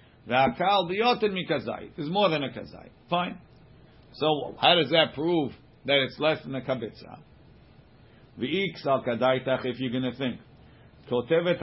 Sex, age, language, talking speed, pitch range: male, 50-69, English, 160 wpm, 130-175 Hz